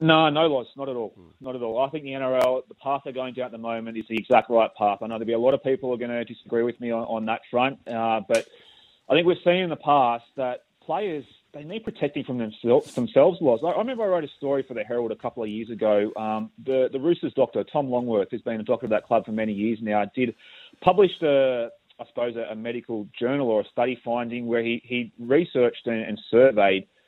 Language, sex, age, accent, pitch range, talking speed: English, male, 30-49, Australian, 115-145 Hz, 255 wpm